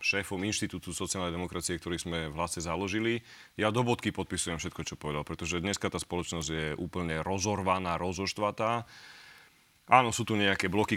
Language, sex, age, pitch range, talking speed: Slovak, male, 30-49, 95-120 Hz, 160 wpm